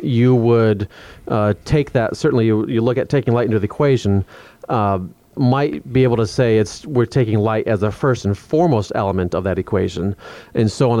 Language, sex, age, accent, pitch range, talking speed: English, male, 30-49, American, 105-125 Hz, 200 wpm